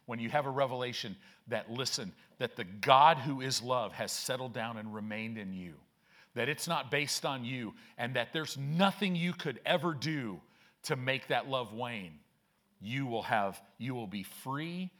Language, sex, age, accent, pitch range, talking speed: English, male, 50-69, American, 120-160 Hz, 185 wpm